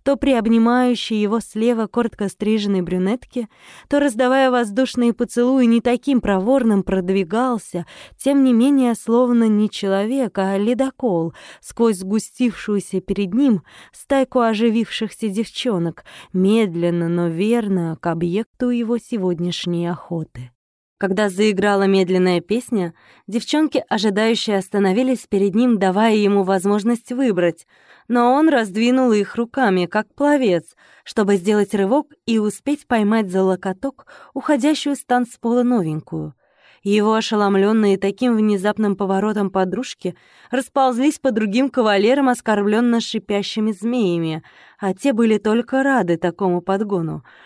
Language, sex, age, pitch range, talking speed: Russian, female, 20-39, 195-245 Hz, 115 wpm